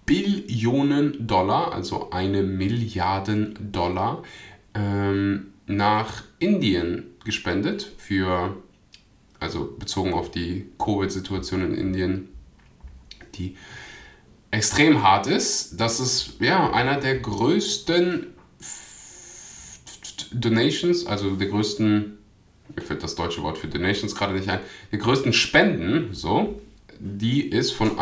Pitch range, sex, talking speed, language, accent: 95-115 Hz, male, 115 wpm, German, German